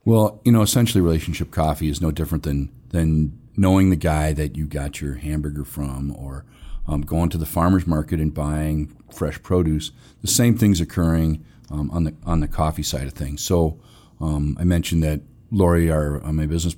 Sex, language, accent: male, English, American